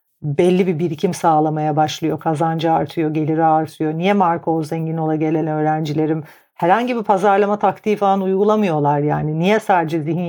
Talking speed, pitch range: 150 wpm, 160-195 Hz